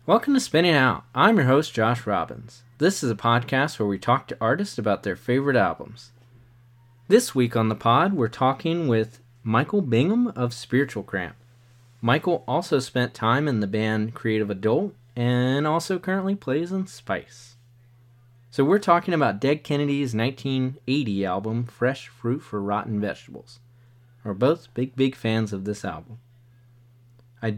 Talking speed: 155 wpm